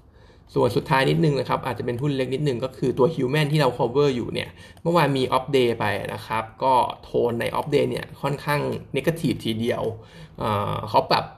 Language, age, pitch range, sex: Thai, 20-39, 110-150 Hz, male